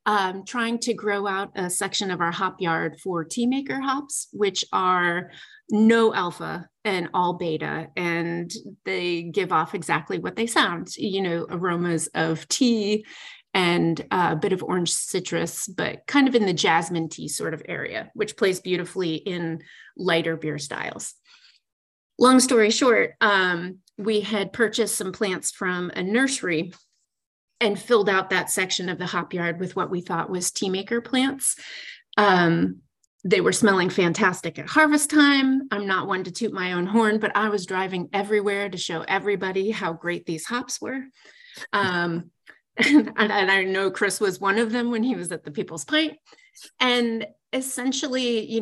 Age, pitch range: 30-49, 175-225 Hz